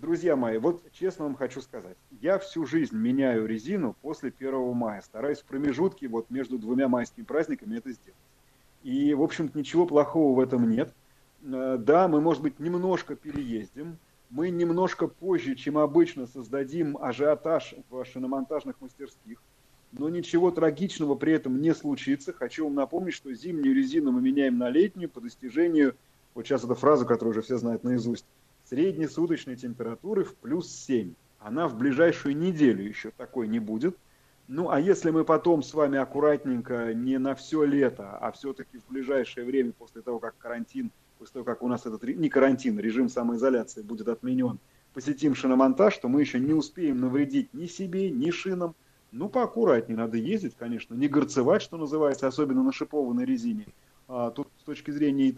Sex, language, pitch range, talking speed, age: male, Russian, 130-185 Hz, 165 wpm, 30-49